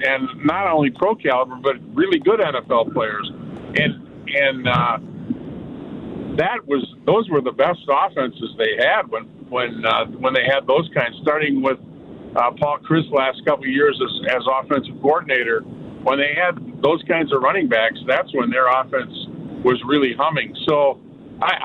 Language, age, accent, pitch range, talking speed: English, 50-69, American, 130-180 Hz, 165 wpm